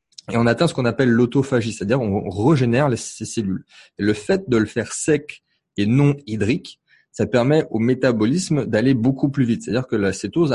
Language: French